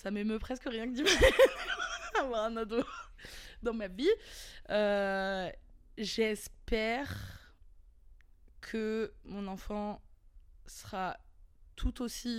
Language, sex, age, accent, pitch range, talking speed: French, female, 20-39, French, 175-220 Hz, 95 wpm